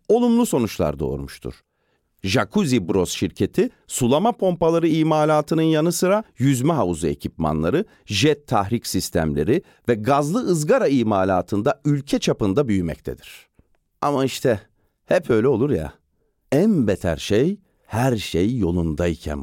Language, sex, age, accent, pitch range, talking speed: Turkish, male, 50-69, native, 90-145 Hz, 110 wpm